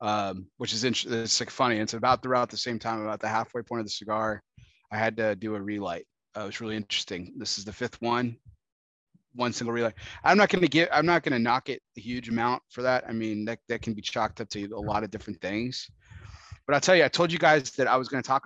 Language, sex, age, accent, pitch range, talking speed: English, male, 30-49, American, 115-140 Hz, 270 wpm